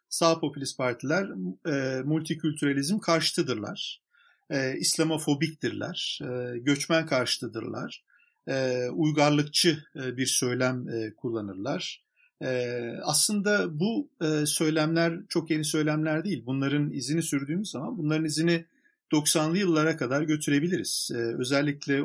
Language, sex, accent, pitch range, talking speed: Turkish, male, native, 130-165 Hz, 105 wpm